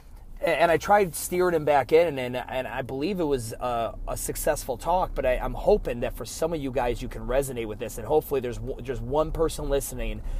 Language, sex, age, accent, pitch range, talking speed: English, male, 30-49, American, 125-165 Hz, 230 wpm